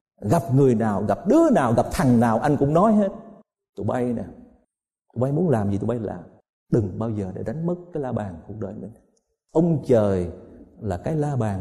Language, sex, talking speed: Vietnamese, male, 215 wpm